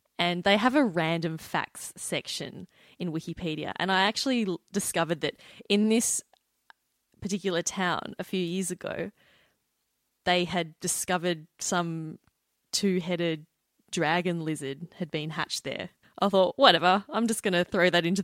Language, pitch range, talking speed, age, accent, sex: English, 170-225 Hz, 140 wpm, 20-39, Australian, female